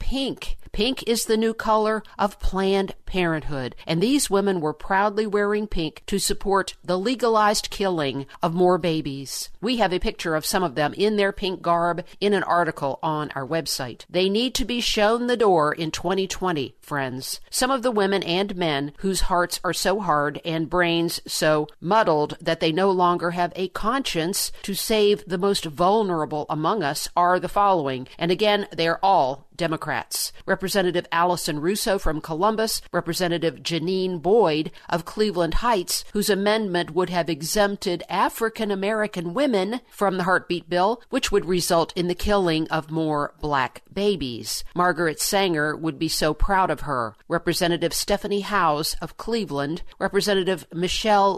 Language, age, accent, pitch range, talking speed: English, 50-69, American, 165-205 Hz, 160 wpm